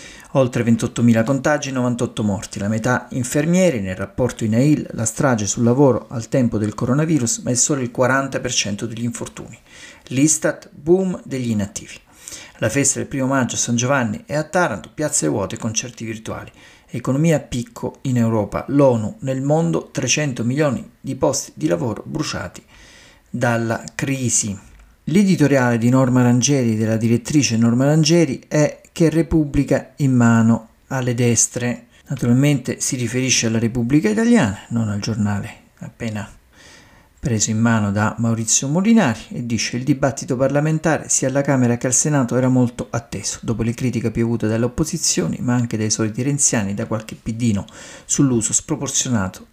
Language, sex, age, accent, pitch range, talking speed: Italian, male, 50-69, native, 115-140 Hz, 150 wpm